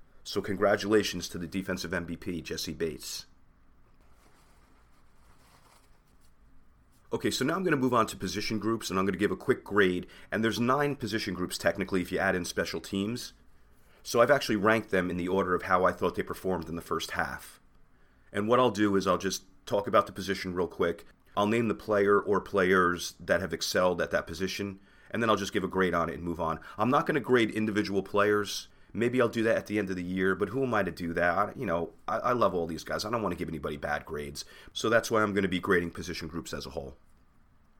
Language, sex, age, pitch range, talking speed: English, male, 30-49, 85-105 Hz, 235 wpm